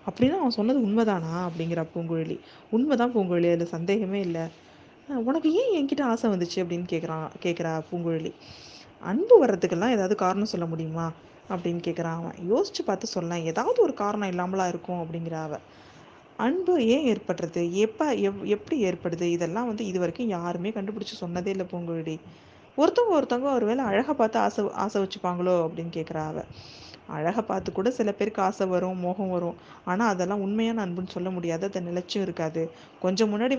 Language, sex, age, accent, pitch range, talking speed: Tamil, female, 20-39, native, 175-220 Hz, 145 wpm